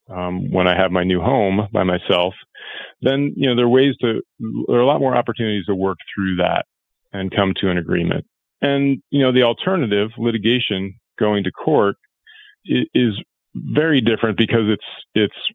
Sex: male